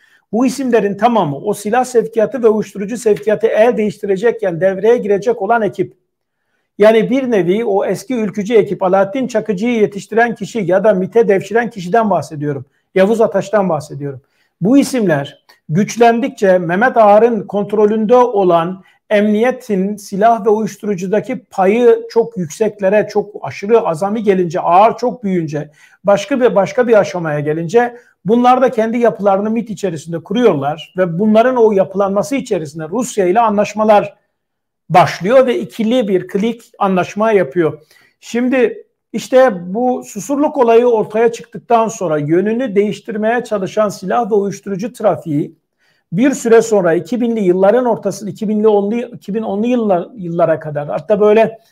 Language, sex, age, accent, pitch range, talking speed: Turkish, male, 50-69, native, 190-230 Hz, 130 wpm